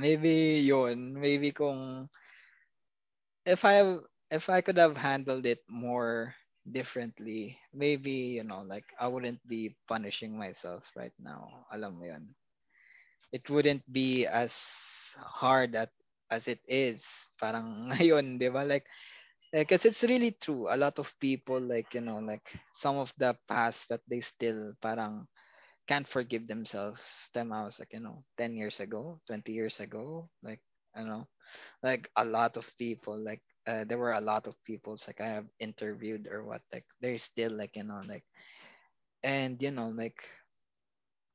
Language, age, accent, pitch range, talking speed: English, 20-39, Filipino, 115-140 Hz, 160 wpm